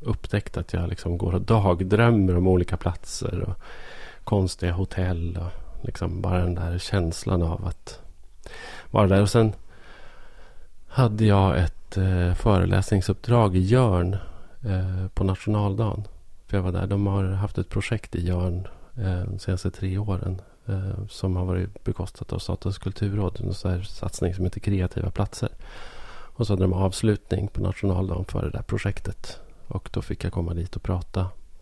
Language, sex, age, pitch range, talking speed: Swedish, male, 30-49, 90-100 Hz, 160 wpm